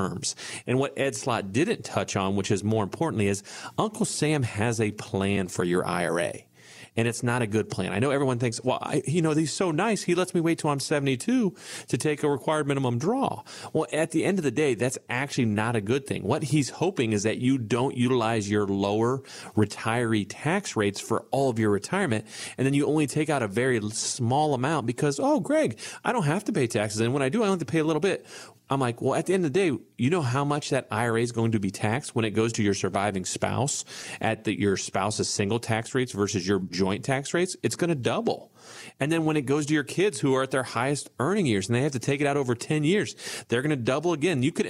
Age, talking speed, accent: 40-59, 250 wpm, American